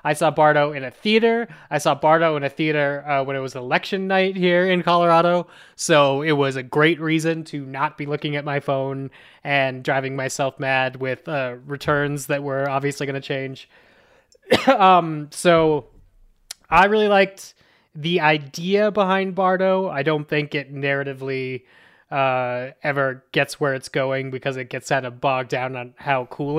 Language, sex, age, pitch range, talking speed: English, male, 20-39, 135-155 Hz, 170 wpm